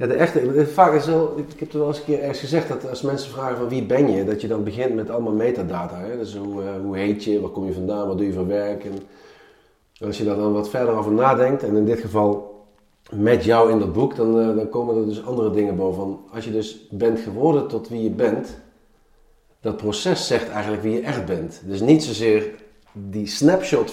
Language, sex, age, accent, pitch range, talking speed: Dutch, male, 40-59, Dutch, 100-135 Hz, 240 wpm